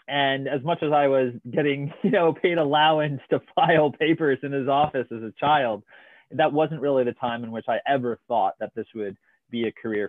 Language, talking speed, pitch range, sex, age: English, 215 wpm, 100-135 Hz, male, 20-39